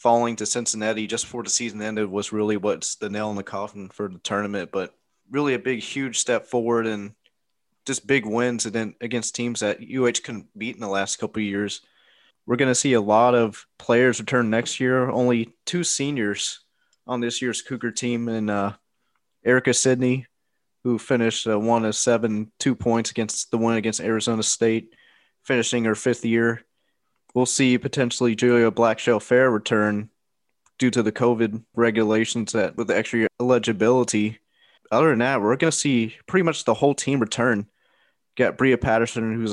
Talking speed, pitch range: 180 wpm, 110-120 Hz